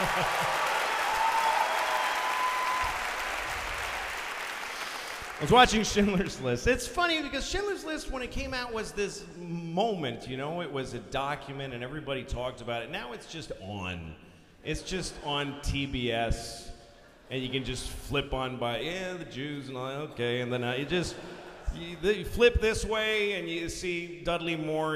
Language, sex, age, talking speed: English, male, 40-59, 150 wpm